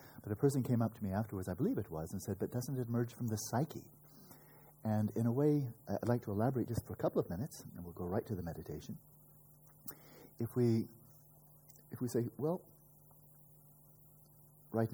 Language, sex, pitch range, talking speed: English, male, 100-140 Hz, 195 wpm